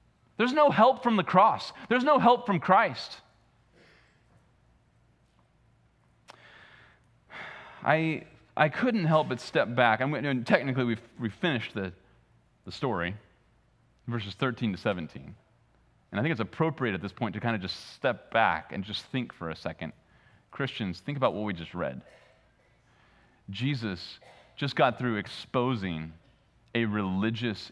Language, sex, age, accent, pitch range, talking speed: English, male, 30-49, American, 105-145 Hz, 145 wpm